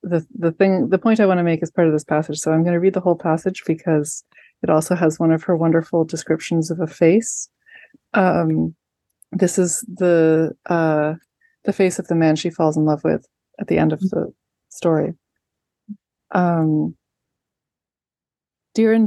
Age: 30-49